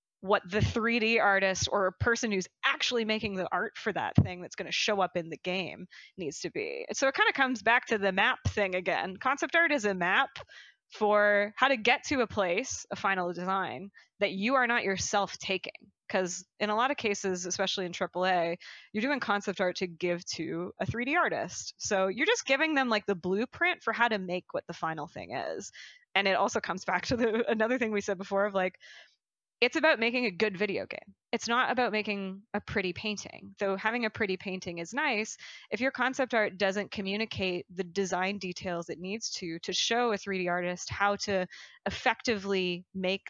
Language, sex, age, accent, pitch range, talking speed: English, female, 20-39, American, 185-230 Hz, 210 wpm